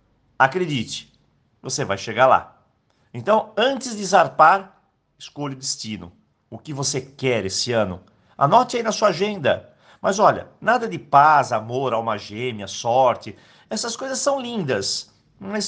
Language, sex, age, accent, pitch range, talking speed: Portuguese, male, 50-69, Brazilian, 110-165 Hz, 140 wpm